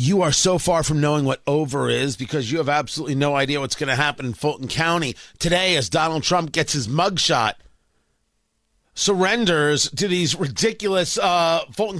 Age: 40-59